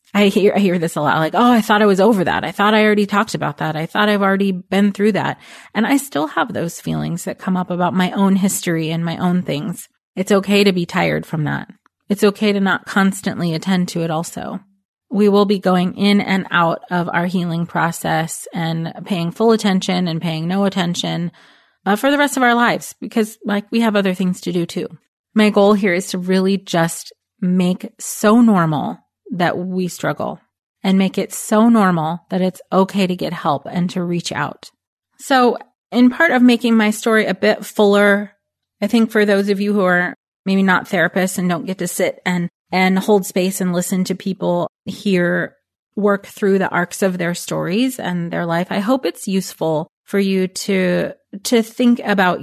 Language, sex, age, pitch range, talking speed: English, female, 30-49, 175-210 Hz, 205 wpm